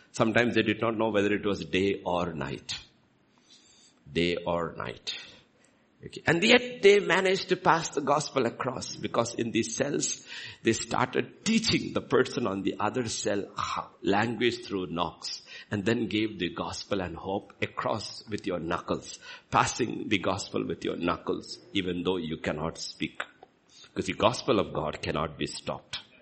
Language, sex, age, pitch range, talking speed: English, male, 60-79, 85-120 Hz, 160 wpm